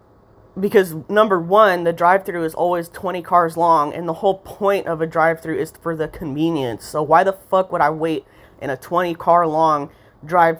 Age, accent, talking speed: 20-39, American, 200 wpm